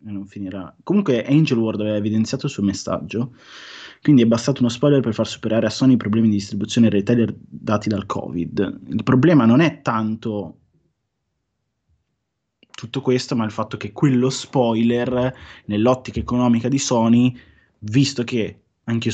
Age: 20-39